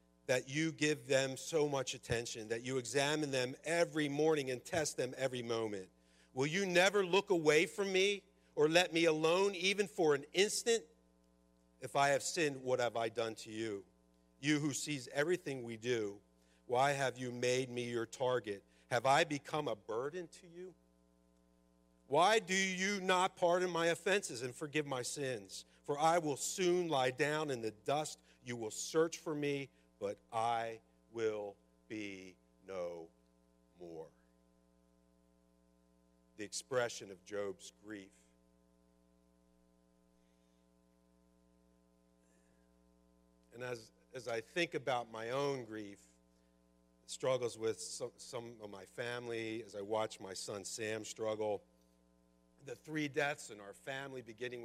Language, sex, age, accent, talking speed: English, male, 50-69, American, 140 wpm